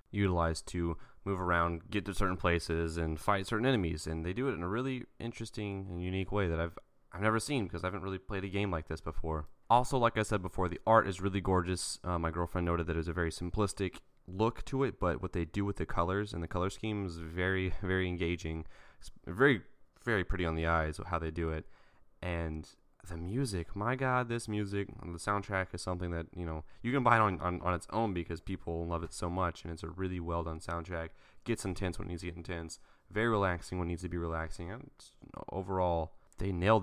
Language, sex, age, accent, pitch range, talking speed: English, male, 20-39, American, 85-100 Hz, 235 wpm